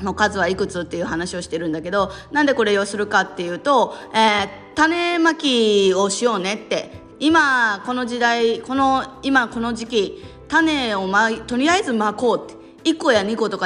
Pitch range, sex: 185-245 Hz, female